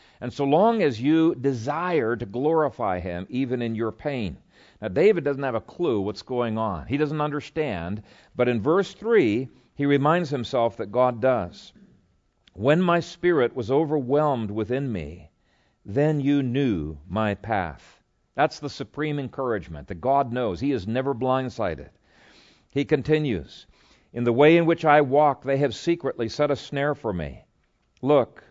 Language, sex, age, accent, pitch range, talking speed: English, male, 50-69, American, 110-140 Hz, 160 wpm